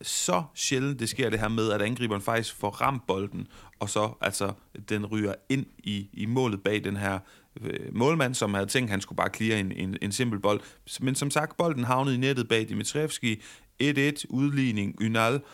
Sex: male